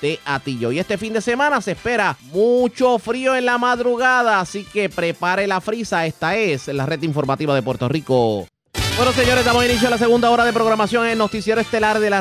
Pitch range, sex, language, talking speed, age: 140-205 Hz, male, Spanish, 210 wpm, 30-49